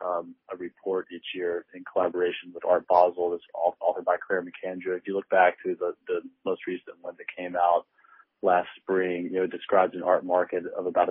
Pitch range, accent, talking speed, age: 85-100 Hz, American, 210 wpm, 30-49